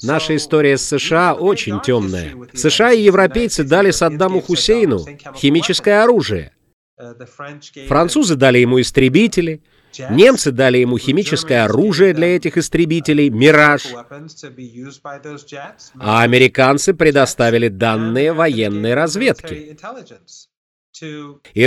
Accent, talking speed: native, 95 wpm